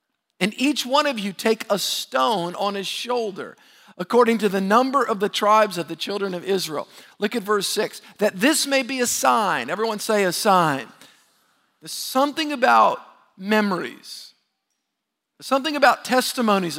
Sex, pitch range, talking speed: male, 200-255 Hz, 160 wpm